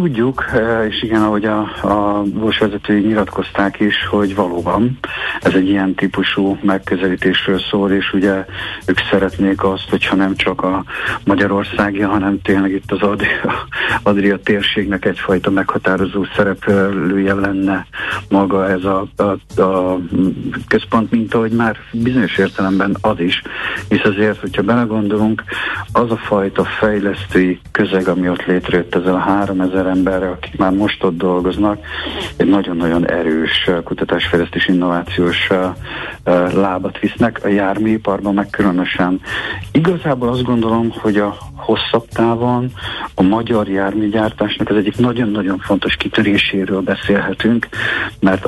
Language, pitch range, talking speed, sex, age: Hungarian, 95-105 Hz, 125 wpm, male, 60-79